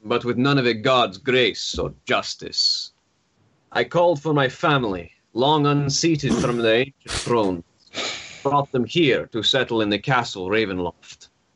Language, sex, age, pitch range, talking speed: English, male, 30-49, 110-140 Hz, 150 wpm